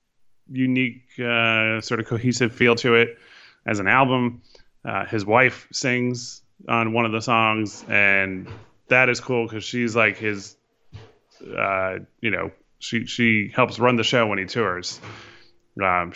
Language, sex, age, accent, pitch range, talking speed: English, male, 20-39, American, 105-125 Hz, 150 wpm